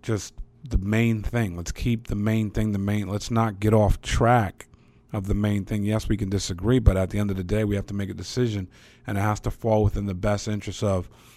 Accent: American